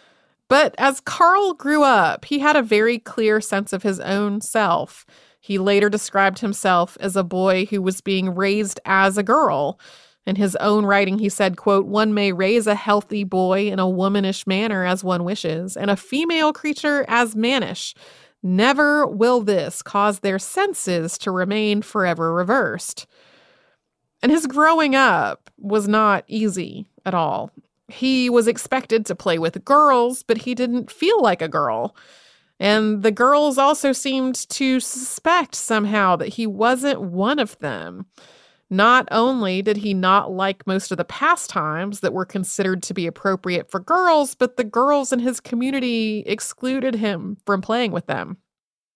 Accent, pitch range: American, 195-255 Hz